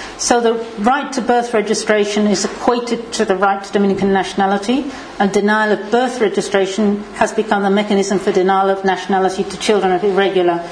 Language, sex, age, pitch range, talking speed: English, female, 40-59, 195-225 Hz, 175 wpm